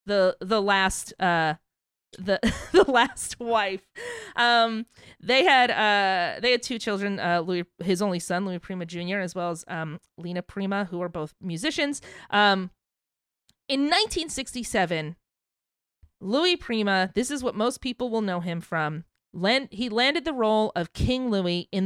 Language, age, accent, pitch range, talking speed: English, 30-49, American, 185-245 Hz, 155 wpm